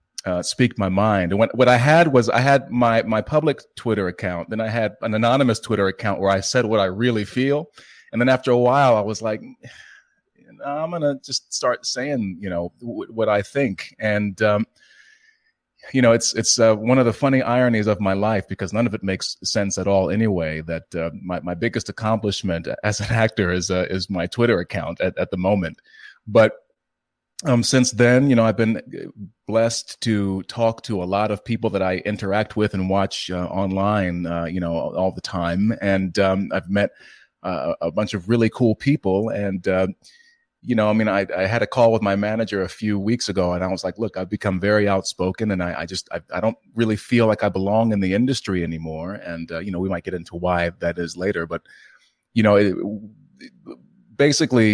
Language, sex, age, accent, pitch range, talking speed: English, male, 30-49, American, 95-115 Hz, 210 wpm